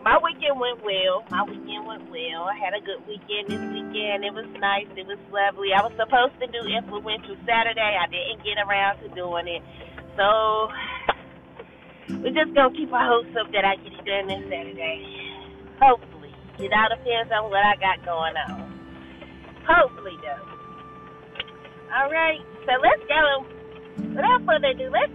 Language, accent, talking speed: English, American, 170 wpm